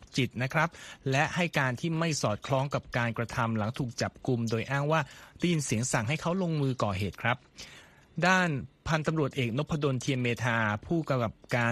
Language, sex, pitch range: Thai, male, 120-160 Hz